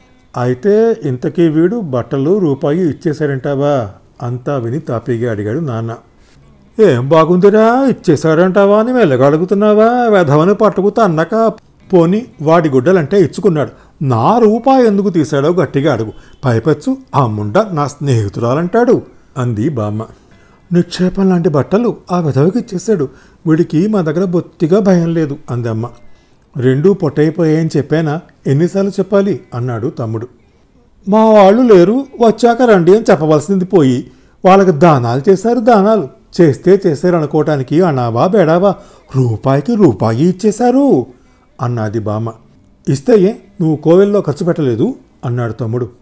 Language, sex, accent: Telugu, male, native